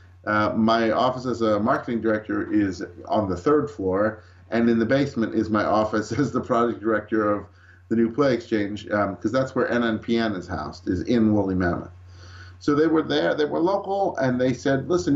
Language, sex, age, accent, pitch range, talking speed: English, male, 50-69, American, 95-130 Hz, 200 wpm